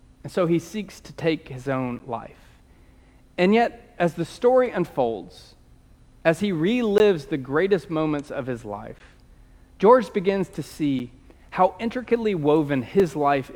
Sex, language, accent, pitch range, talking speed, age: male, English, American, 135-190 Hz, 145 wpm, 40-59